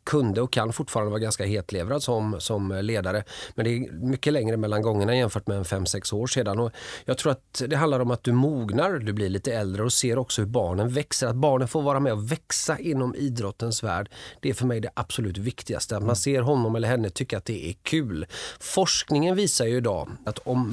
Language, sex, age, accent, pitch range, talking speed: Swedish, male, 30-49, native, 105-130 Hz, 220 wpm